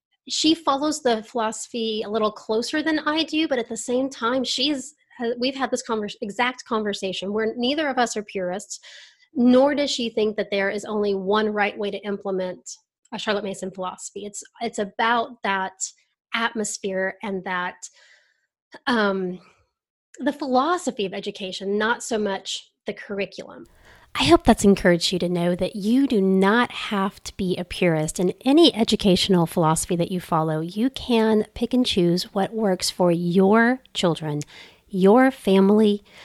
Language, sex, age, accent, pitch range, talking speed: English, female, 30-49, American, 195-250 Hz, 160 wpm